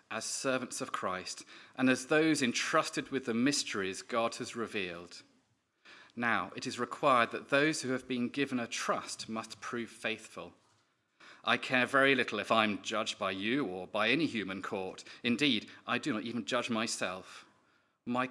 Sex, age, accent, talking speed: male, 40-59, British, 170 wpm